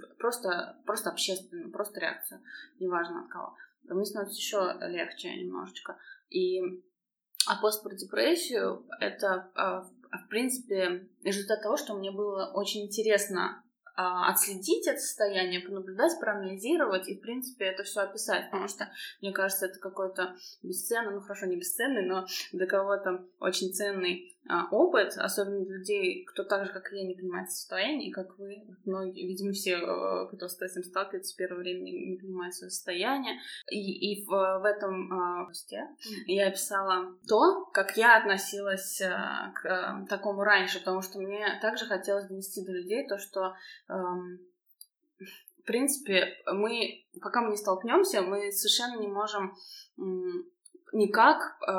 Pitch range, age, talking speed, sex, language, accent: 185-220 Hz, 20-39, 145 wpm, female, Russian, native